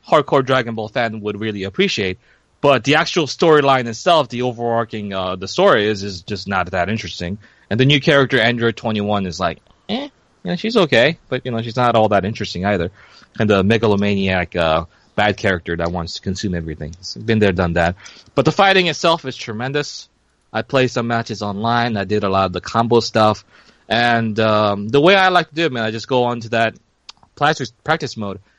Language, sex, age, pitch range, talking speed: English, male, 30-49, 100-130 Hz, 205 wpm